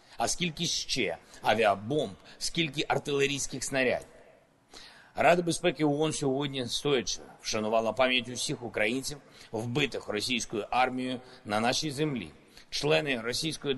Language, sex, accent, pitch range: Ukrainian, male, native, 110-145 Hz